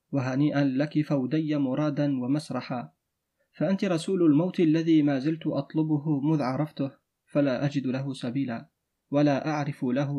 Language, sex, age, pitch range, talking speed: Arabic, male, 30-49, 135-150 Hz, 125 wpm